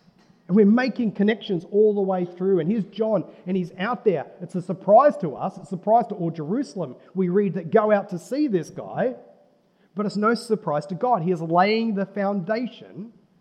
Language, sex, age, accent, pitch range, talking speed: English, male, 40-59, Australian, 160-210 Hz, 205 wpm